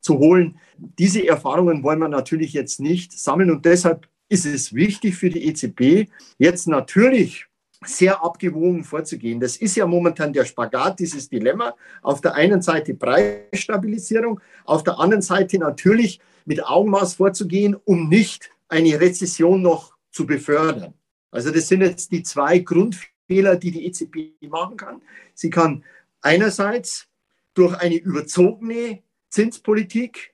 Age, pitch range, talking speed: 50-69, 155-195 Hz, 140 wpm